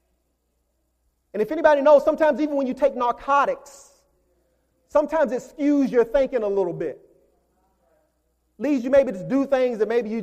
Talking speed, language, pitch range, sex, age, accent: 160 wpm, English, 205-280 Hz, male, 30-49, American